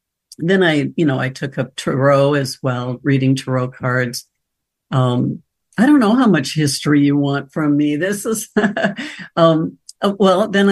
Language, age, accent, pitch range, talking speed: English, 60-79, American, 135-165 Hz, 160 wpm